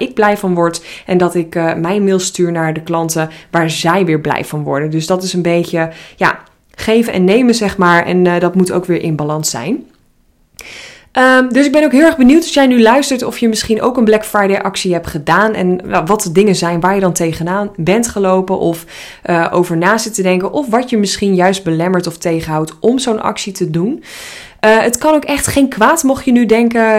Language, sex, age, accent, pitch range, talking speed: Dutch, female, 20-39, Dutch, 170-215 Hz, 230 wpm